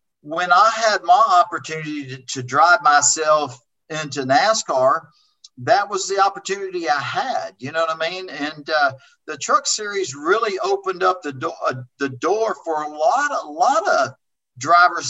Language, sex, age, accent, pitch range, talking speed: English, male, 50-69, American, 150-195 Hz, 165 wpm